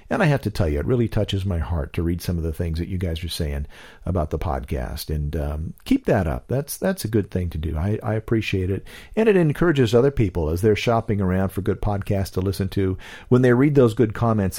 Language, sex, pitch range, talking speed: English, male, 90-125 Hz, 255 wpm